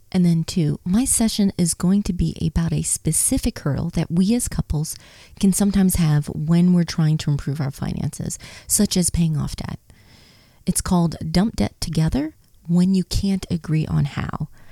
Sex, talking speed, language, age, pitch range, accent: female, 175 wpm, English, 30-49, 150-195 Hz, American